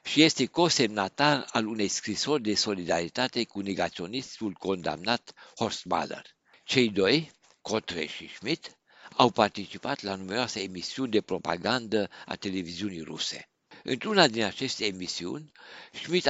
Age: 60-79